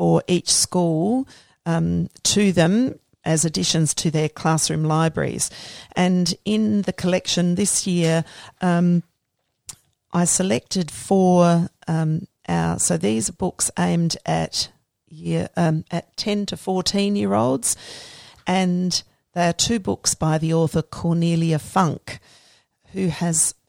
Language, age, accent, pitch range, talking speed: English, 40-59, Australian, 155-180 Hz, 115 wpm